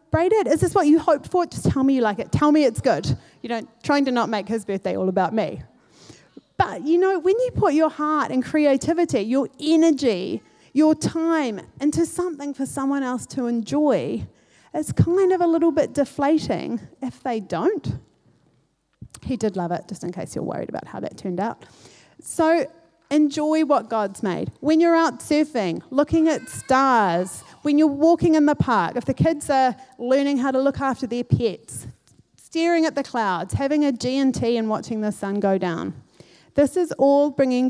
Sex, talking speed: female, 190 wpm